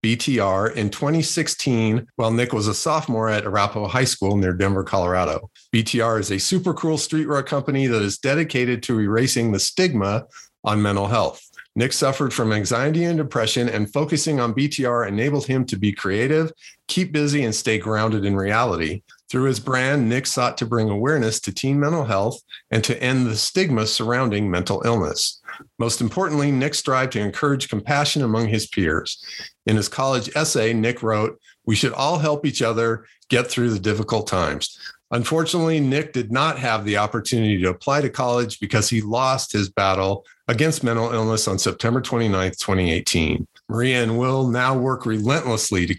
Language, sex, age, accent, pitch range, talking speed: English, male, 40-59, American, 110-135 Hz, 170 wpm